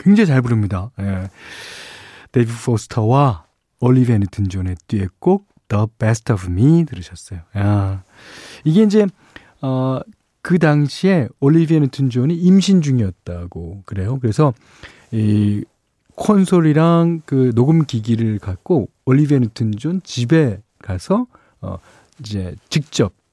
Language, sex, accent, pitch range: Korean, male, native, 105-150 Hz